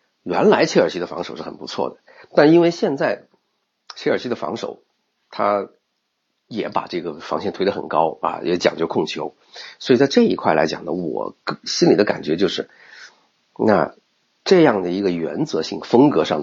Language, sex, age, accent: Chinese, male, 50-69, native